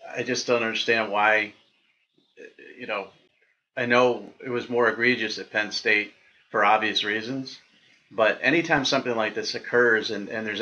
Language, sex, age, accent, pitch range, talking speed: English, male, 40-59, American, 105-125 Hz, 160 wpm